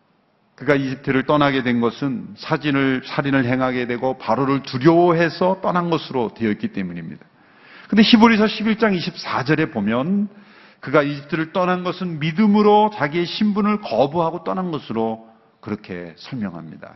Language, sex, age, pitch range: Korean, male, 40-59, 135-200 Hz